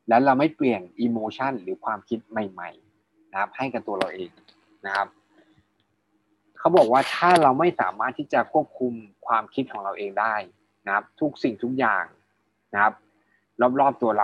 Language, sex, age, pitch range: Thai, male, 20-39, 105-130 Hz